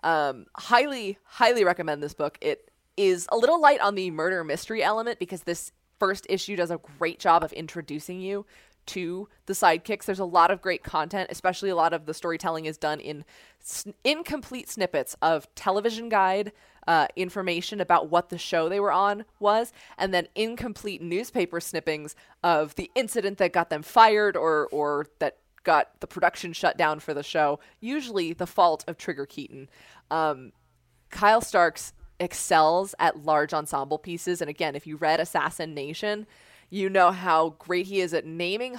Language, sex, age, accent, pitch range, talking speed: English, female, 20-39, American, 155-200 Hz, 175 wpm